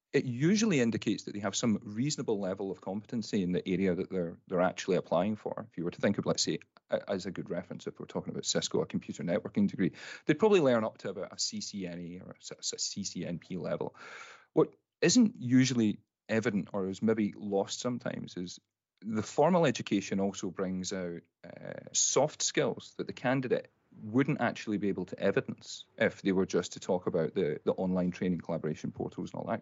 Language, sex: English, male